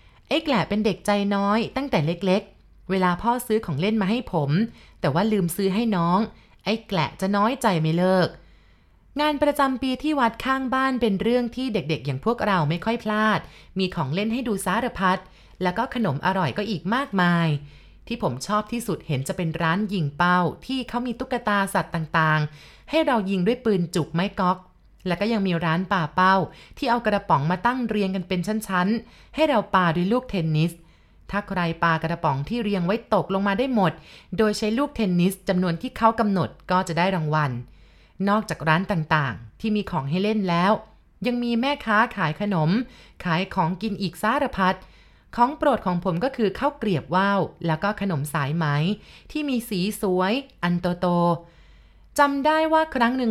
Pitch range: 175-225 Hz